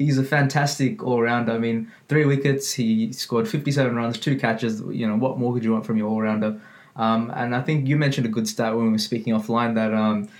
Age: 20-39